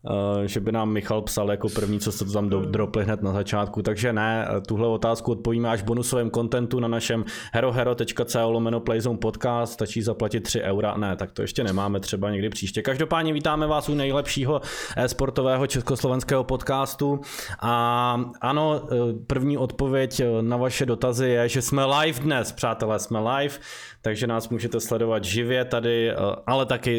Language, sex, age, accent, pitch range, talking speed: Czech, male, 20-39, native, 110-130 Hz, 160 wpm